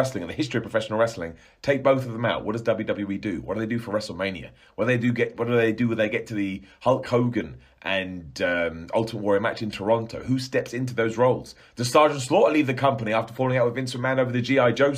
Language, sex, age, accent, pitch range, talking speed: English, male, 30-49, British, 95-120 Hz, 260 wpm